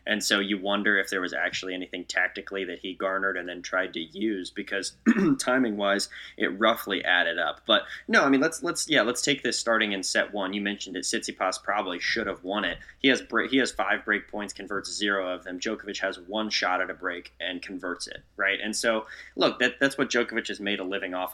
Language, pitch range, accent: English, 95-115 Hz, American